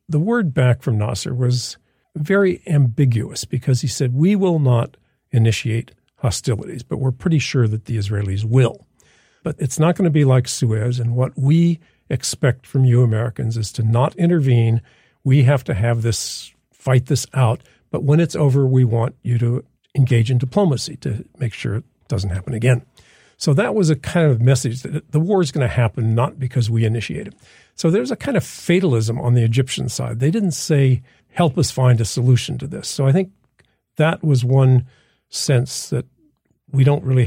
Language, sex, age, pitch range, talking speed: English, male, 50-69, 120-145 Hz, 190 wpm